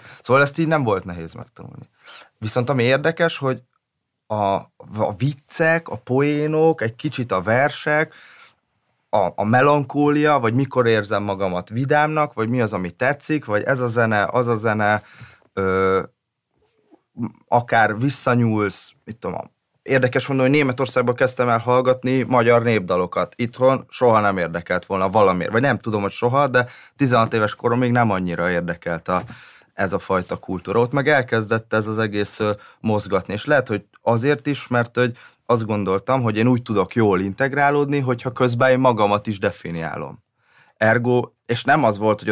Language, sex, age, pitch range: Hungarian, male, 30-49, 105-135 Hz